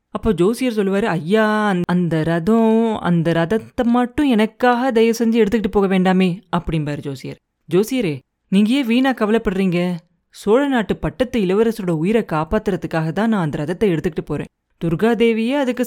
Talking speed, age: 135 wpm, 30-49